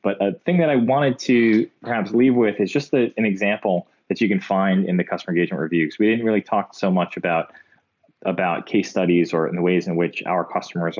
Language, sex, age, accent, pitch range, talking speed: English, male, 20-39, American, 85-110 Hz, 230 wpm